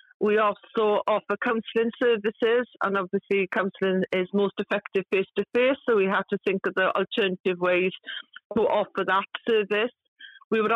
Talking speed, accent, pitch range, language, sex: 160 wpm, British, 185-220 Hz, English, female